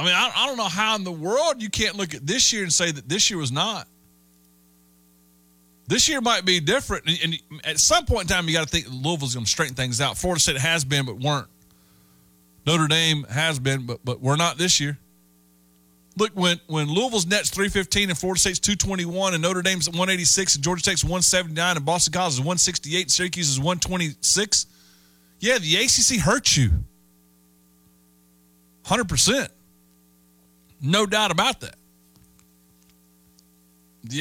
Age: 30-49